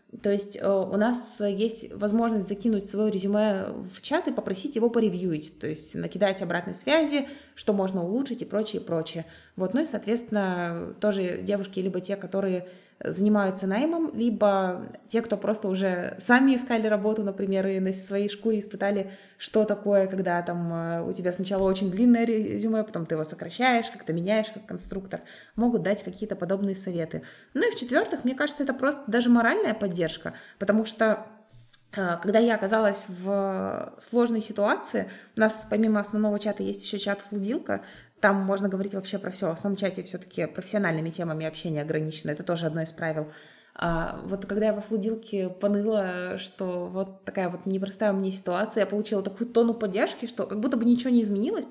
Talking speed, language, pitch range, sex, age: 170 wpm, Russian, 185-220 Hz, female, 20-39